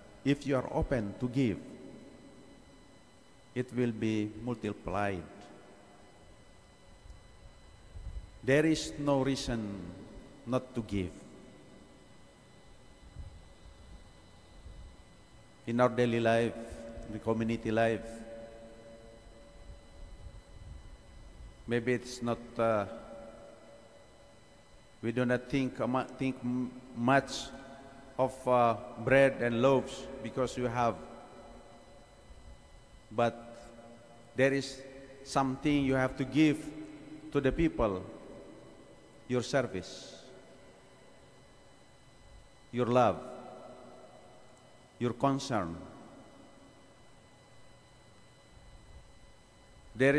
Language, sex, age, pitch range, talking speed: English, male, 50-69, 105-135 Hz, 70 wpm